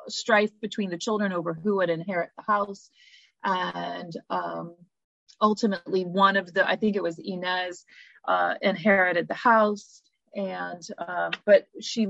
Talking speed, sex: 145 wpm, female